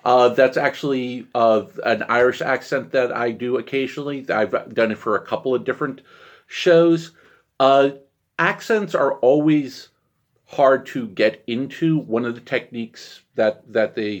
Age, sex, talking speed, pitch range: 40-59, male, 150 wpm, 115-135 Hz